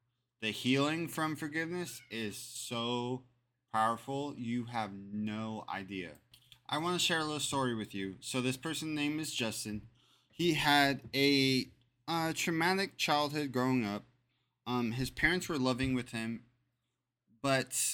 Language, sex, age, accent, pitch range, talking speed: English, male, 20-39, American, 115-135 Hz, 140 wpm